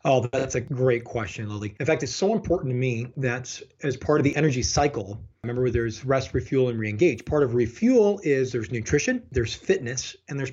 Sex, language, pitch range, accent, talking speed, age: male, English, 125-160 Hz, American, 205 wpm, 30-49